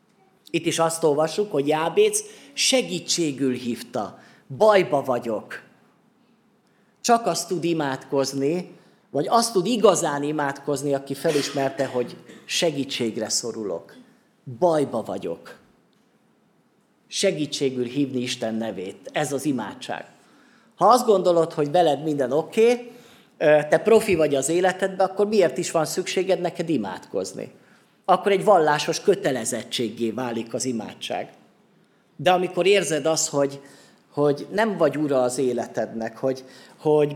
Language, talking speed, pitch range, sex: Hungarian, 115 wpm, 135-190 Hz, male